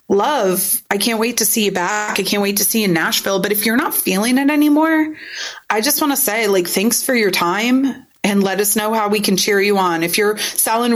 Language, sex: English, female